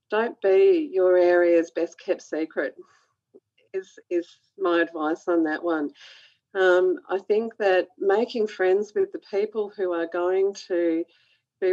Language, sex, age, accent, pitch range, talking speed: English, female, 40-59, Australian, 175-220 Hz, 145 wpm